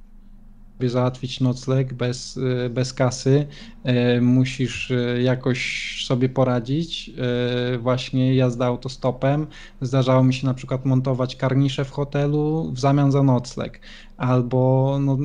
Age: 20-39